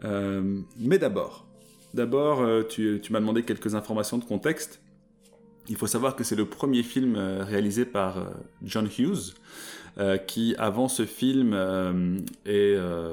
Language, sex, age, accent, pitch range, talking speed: French, male, 20-39, French, 95-120 Hz, 135 wpm